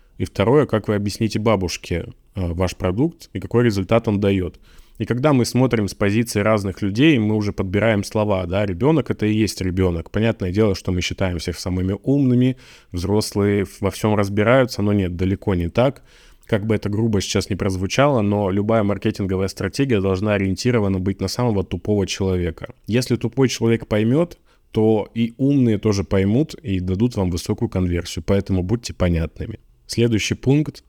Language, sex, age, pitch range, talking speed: Russian, male, 20-39, 95-115 Hz, 165 wpm